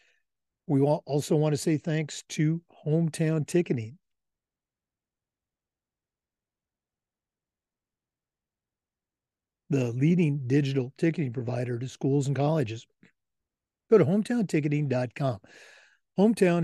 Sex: male